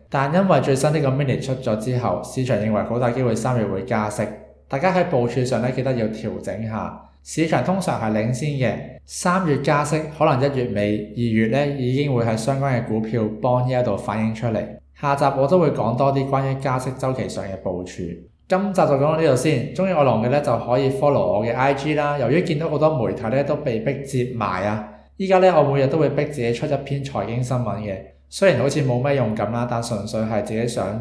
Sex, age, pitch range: male, 20-39, 110-140 Hz